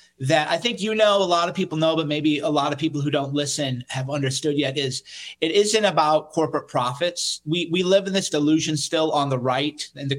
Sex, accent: male, American